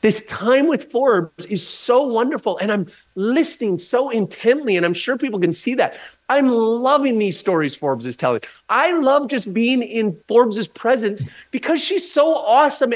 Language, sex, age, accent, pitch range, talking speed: English, male, 30-49, American, 195-270 Hz, 170 wpm